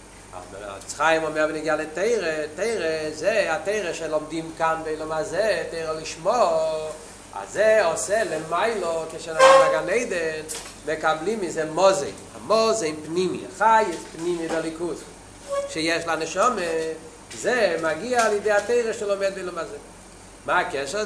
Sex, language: male, Hebrew